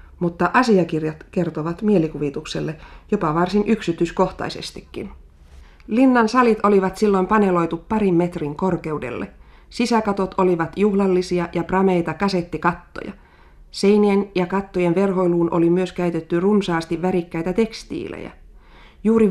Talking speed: 100 wpm